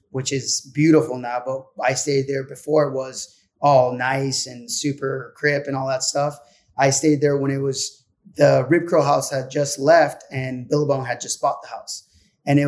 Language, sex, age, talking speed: English, male, 20-39, 200 wpm